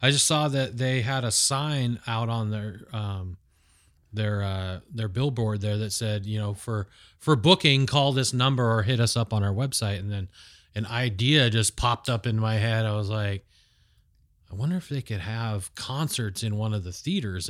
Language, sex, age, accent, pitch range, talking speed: English, male, 30-49, American, 100-125 Hz, 200 wpm